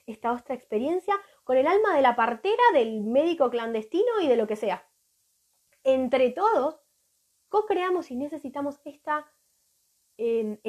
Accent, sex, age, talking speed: Argentinian, female, 20-39, 135 wpm